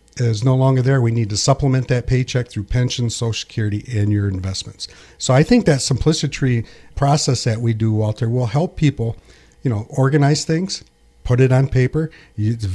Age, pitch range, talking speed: 50-69, 115-145 Hz, 185 wpm